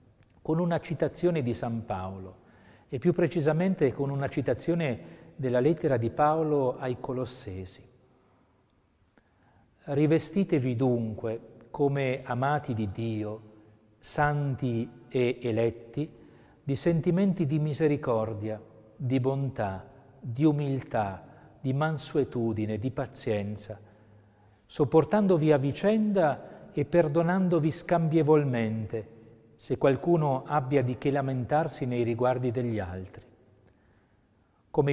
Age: 40-59